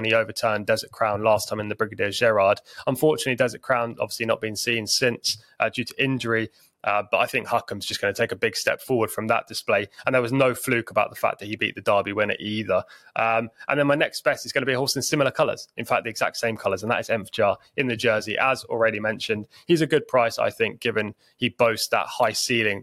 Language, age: English, 20-39